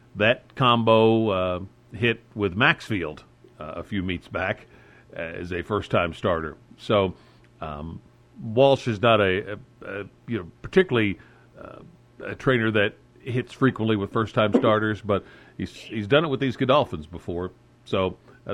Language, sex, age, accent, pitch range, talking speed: English, male, 50-69, American, 95-120 Hz, 150 wpm